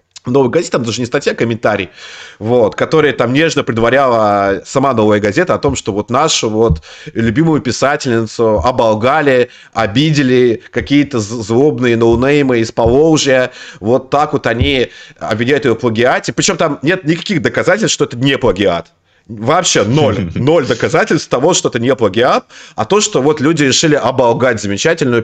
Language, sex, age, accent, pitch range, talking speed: Russian, male, 30-49, native, 110-150 Hz, 155 wpm